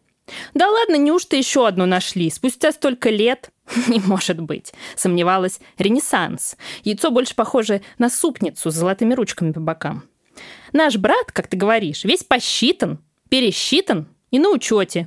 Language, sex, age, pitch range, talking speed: Russian, female, 20-39, 180-270 Hz, 140 wpm